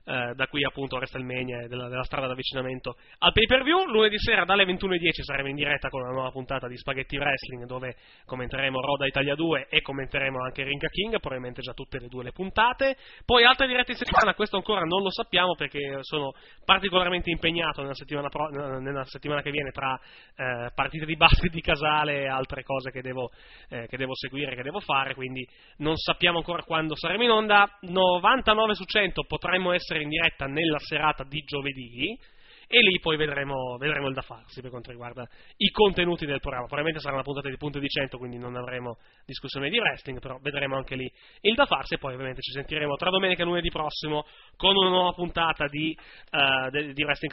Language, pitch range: Italian, 130-180 Hz